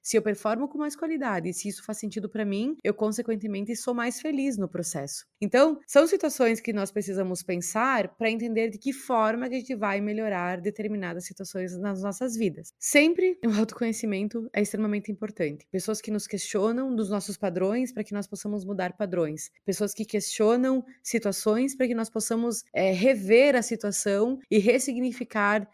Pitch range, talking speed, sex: 200-245 Hz, 175 wpm, female